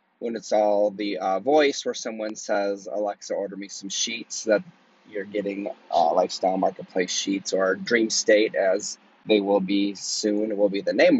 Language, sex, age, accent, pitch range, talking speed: English, male, 20-39, American, 105-160 Hz, 180 wpm